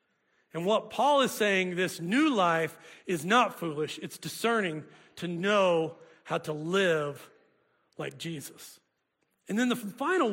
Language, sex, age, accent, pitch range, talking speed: English, male, 40-59, American, 170-235 Hz, 140 wpm